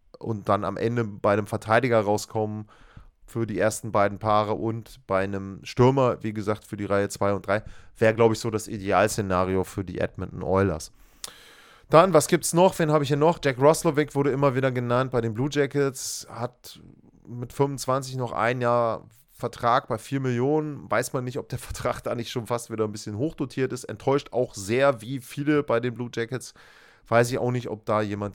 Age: 30-49